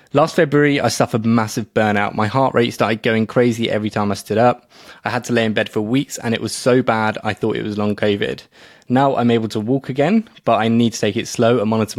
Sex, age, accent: male, 20-39, British